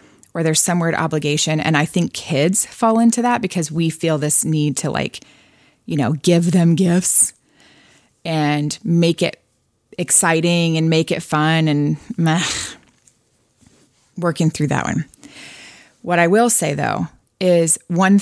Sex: female